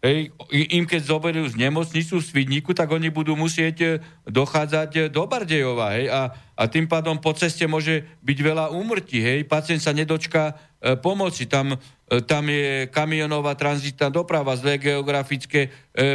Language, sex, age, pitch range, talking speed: Slovak, male, 50-69, 140-175 Hz, 160 wpm